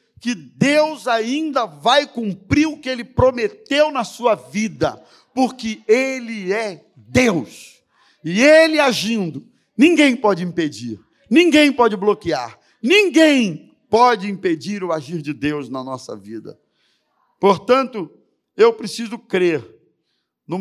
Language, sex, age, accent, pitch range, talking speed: Portuguese, male, 50-69, Brazilian, 140-225 Hz, 115 wpm